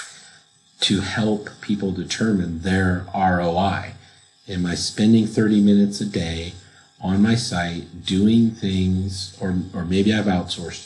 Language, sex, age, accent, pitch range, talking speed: English, male, 50-69, American, 85-100 Hz, 125 wpm